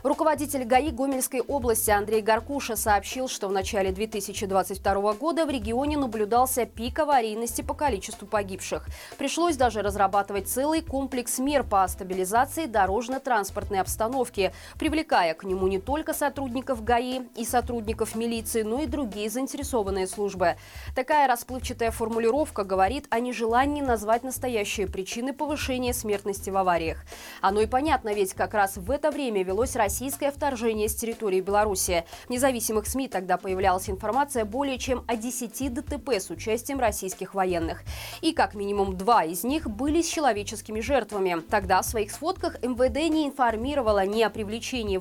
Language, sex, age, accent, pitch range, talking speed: Russian, female, 20-39, native, 200-275 Hz, 145 wpm